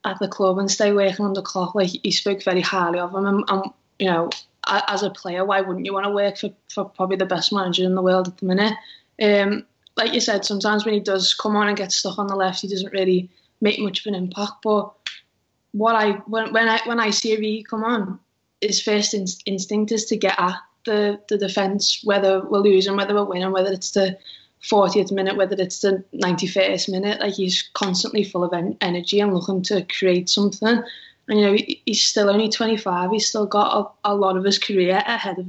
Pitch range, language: 190-210 Hz, English